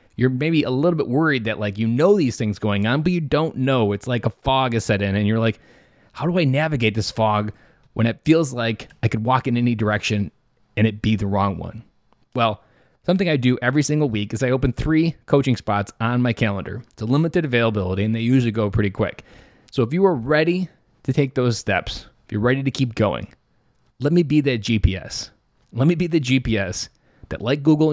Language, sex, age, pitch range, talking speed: English, male, 20-39, 105-135 Hz, 225 wpm